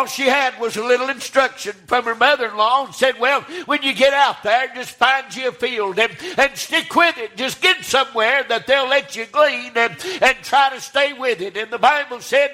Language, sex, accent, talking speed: English, male, American, 225 wpm